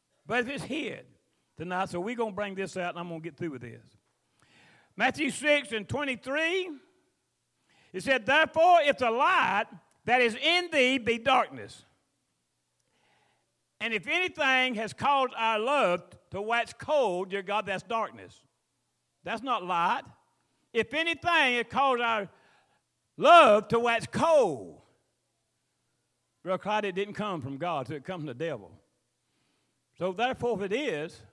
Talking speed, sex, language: 150 wpm, male, English